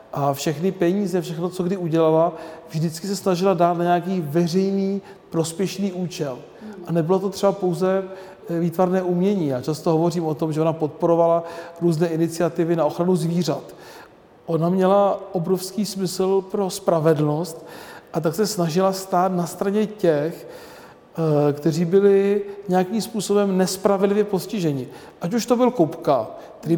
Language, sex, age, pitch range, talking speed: Czech, male, 40-59, 165-195 Hz, 140 wpm